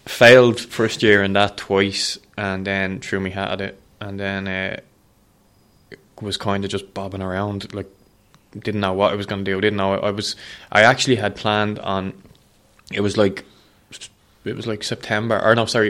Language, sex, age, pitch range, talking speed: English, male, 20-39, 95-110 Hz, 190 wpm